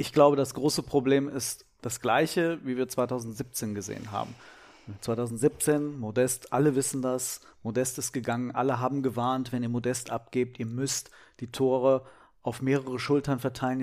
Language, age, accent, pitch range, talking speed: German, 40-59, German, 125-165 Hz, 155 wpm